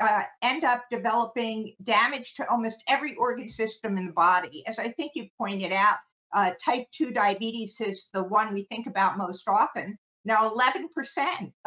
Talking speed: 170 wpm